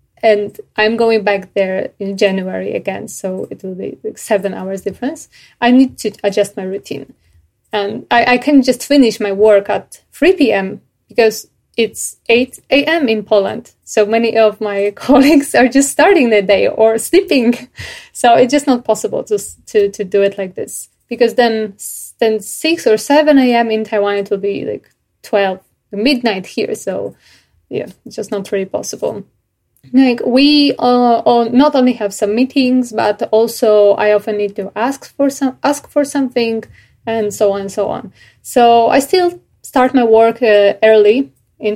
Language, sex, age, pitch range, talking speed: English, female, 20-39, 205-255 Hz, 175 wpm